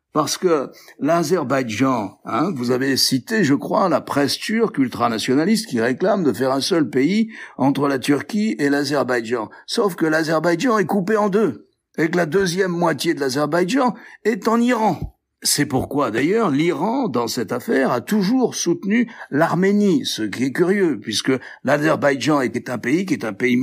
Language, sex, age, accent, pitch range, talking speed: French, male, 60-79, French, 135-205 Hz, 170 wpm